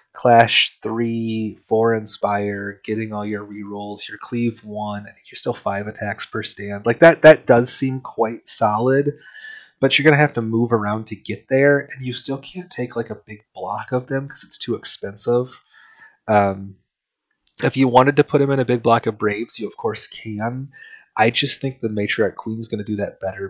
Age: 20-39